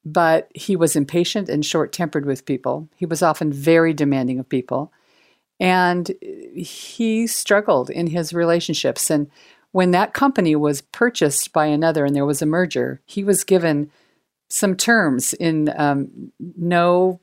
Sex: female